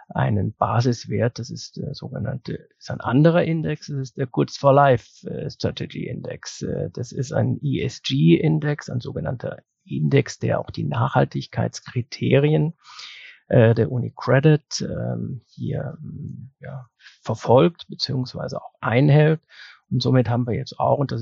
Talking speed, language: 125 wpm, German